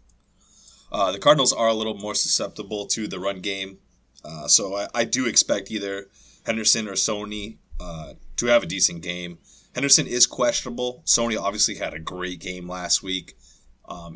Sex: male